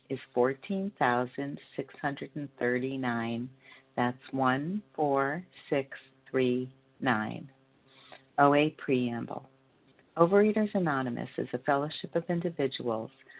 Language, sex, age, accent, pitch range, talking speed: English, female, 50-69, American, 130-155 Hz, 75 wpm